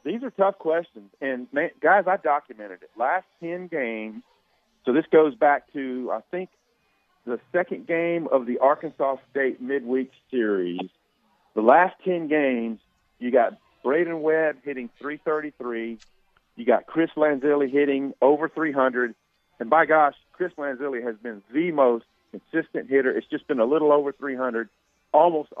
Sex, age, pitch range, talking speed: male, 50-69, 125-155 Hz, 150 wpm